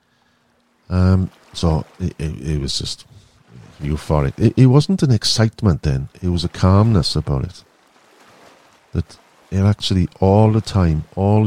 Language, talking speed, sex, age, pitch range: English, 140 wpm, male, 50-69, 80-105 Hz